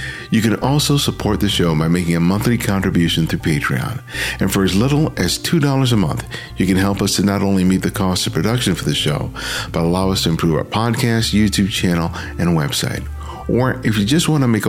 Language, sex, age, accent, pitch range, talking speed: English, male, 50-69, American, 90-125 Hz, 220 wpm